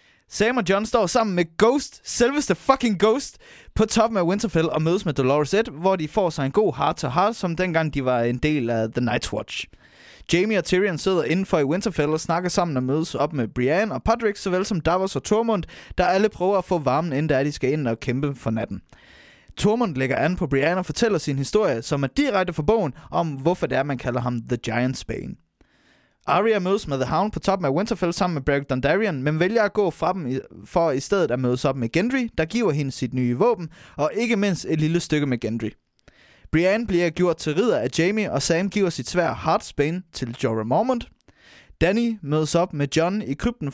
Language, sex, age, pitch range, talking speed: Danish, male, 20-39, 135-195 Hz, 220 wpm